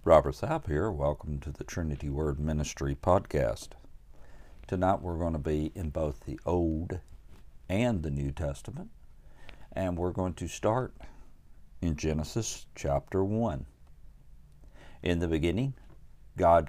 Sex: male